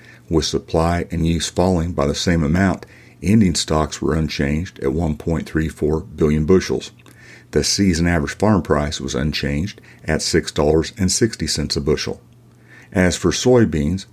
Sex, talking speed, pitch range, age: male, 130 wpm, 75-95 Hz, 50-69